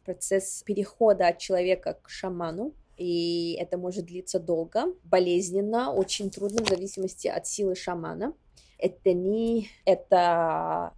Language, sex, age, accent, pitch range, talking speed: Russian, female, 20-39, native, 165-195 Hz, 125 wpm